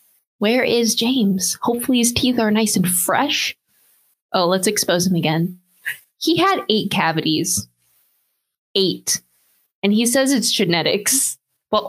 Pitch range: 180-235 Hz